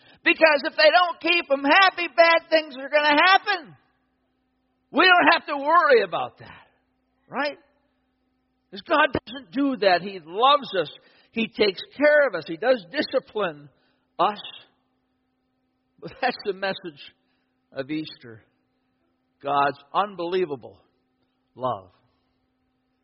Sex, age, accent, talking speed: male, 60-79, American, 120 wpm